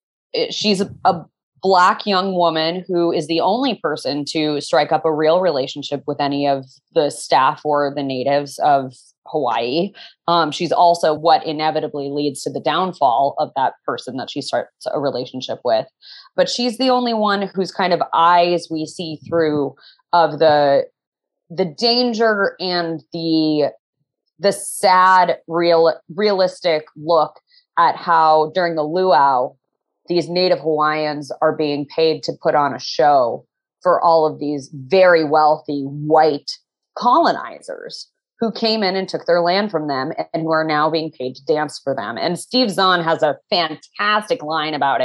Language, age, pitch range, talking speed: English, 20-39, 155-190 Hz, 155 wpm